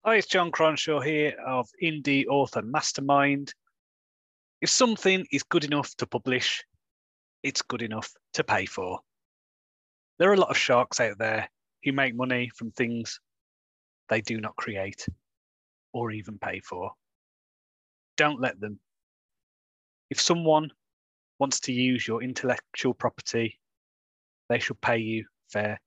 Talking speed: 135 wpm